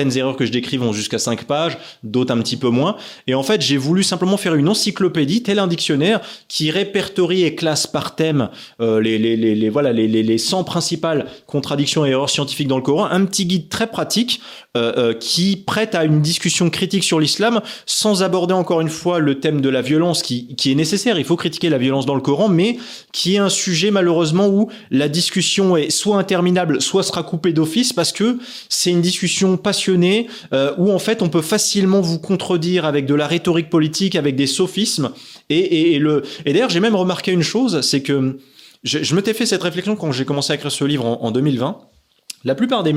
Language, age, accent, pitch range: French, 20-39, French, 140-190 Hz